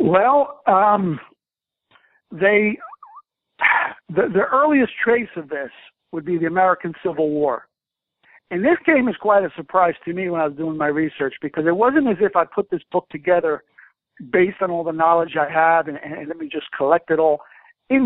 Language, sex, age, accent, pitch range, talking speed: English, male, 60-79, American, 160-225 Hz, 185 wpm